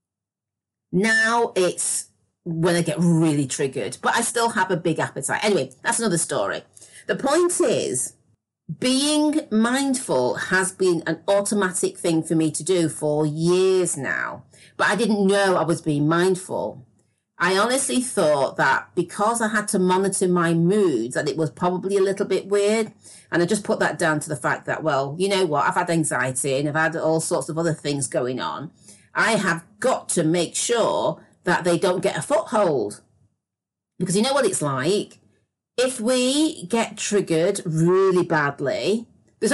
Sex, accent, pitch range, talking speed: female, British, 155-205 Hz, 175 wpm